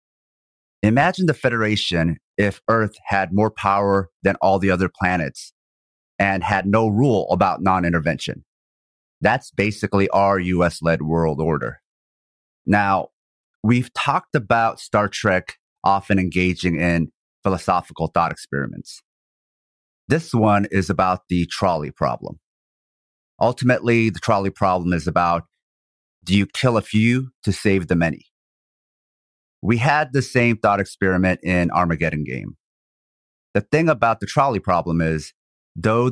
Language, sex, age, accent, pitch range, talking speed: English, male, 30-49, American, 85-110 Hz, 125 wpm